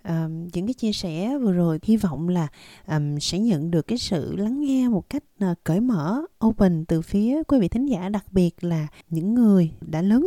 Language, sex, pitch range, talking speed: Vietnamese, female, 165-230 Hz, 215 wpm